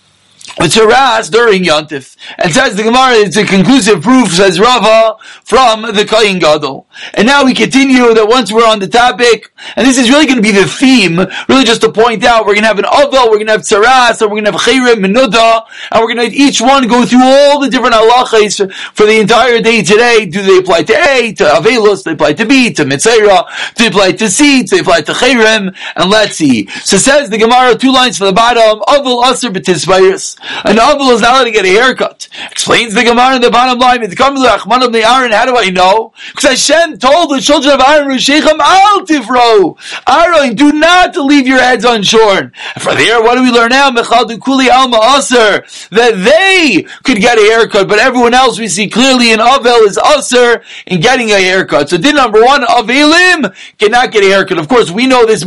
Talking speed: 220 wpm